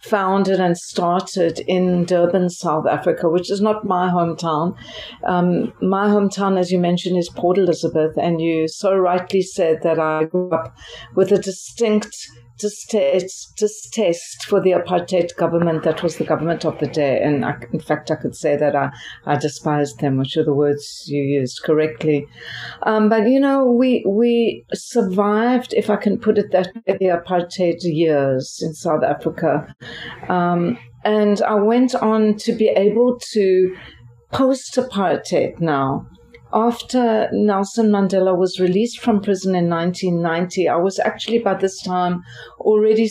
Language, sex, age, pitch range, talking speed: English, female, 60-79, 160-215 Hz, 155 wpm